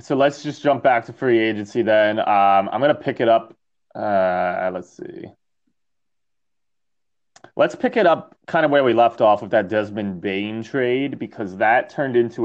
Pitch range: 100-120 Hz